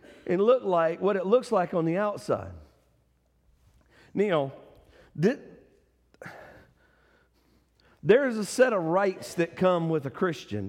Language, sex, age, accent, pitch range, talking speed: English, male, 50-69, American, 150-205 Hz, 130 wpm